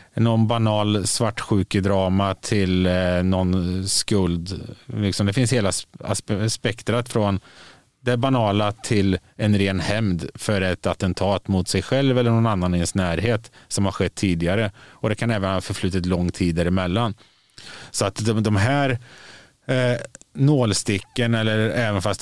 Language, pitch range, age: Swedish, 90-110 Hz, 30-49